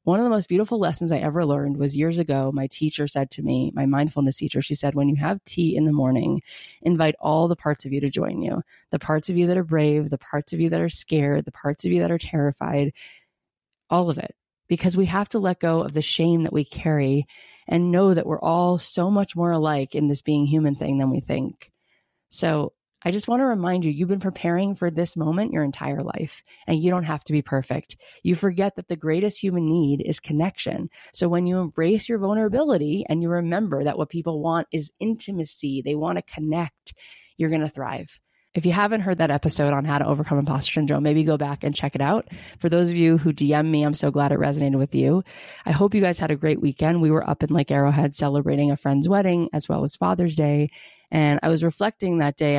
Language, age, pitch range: English, 30-49, 145-175 Hz